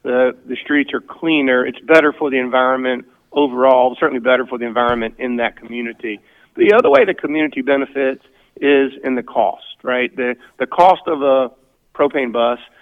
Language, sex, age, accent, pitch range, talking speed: English, male, 50-69, American, 125-160 Hz, 175 wpm